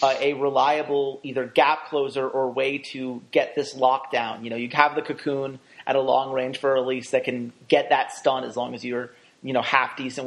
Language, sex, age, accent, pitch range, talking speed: English, male, 30-49, American, 135-170 Hz, 235 wpm